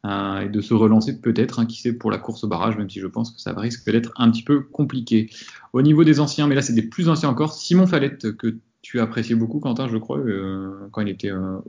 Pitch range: 110-130 Hz